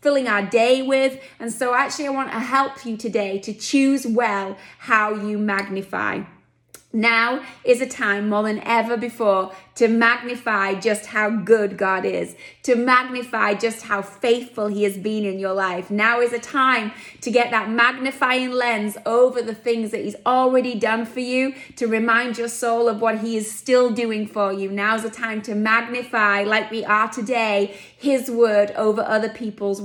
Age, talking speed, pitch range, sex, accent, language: 20-39, 180 wpm, 210-245 Hz, female, British, English